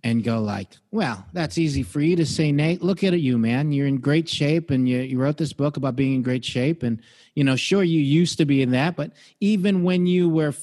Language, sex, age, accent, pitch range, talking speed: English, male, 40-59, American, 125-170 Hz, 255 wpm